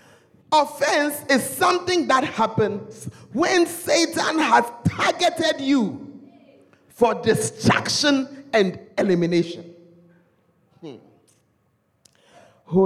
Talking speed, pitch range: 70 wpm, 165-265 Hz